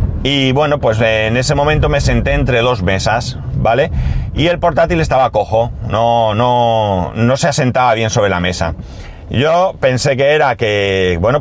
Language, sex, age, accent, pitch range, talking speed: Spanish, male, 30-49, Spanish, 105-145 Hz, 170 wpm